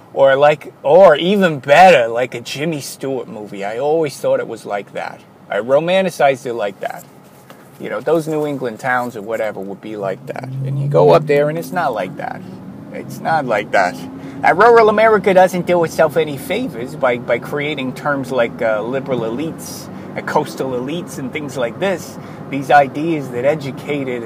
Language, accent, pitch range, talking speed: English, American, 120-160 Hz, 180 wpm